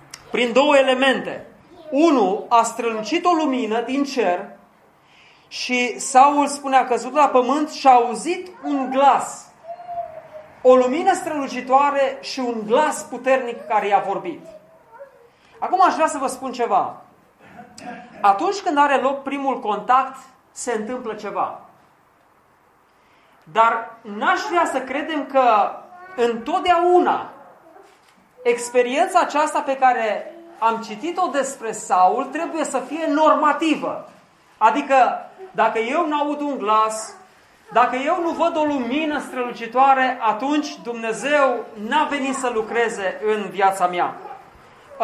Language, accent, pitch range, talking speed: Romanian, native, 235-315 Hz, 120 wpm